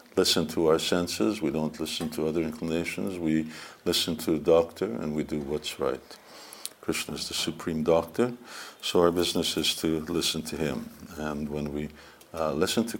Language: English